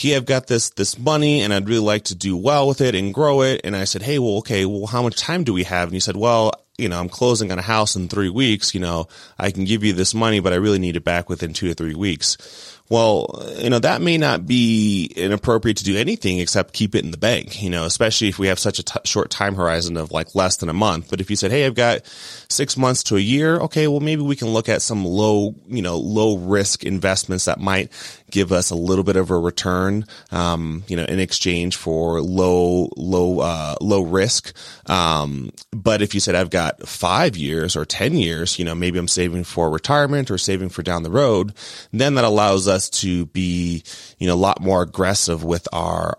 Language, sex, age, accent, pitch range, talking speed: English, male, 30-49, American, 90-110 Hz, 240 wpm